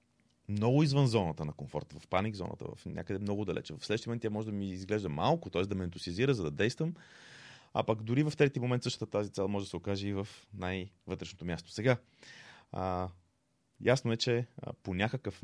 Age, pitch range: 30-49, 90-115 Hz